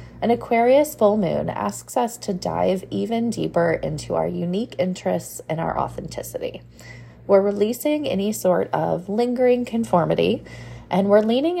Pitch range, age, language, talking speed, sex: 160-240 Hz, 20-39, English, 140 wpm, female